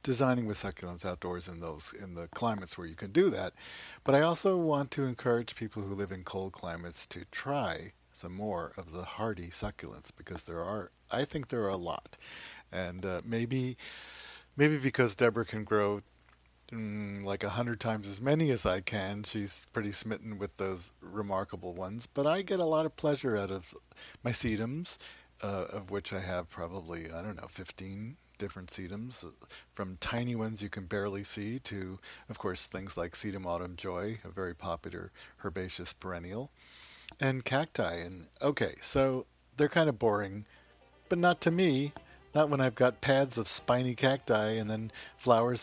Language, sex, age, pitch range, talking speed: English, male, 50-69, 95-130 Hz, 180 wpm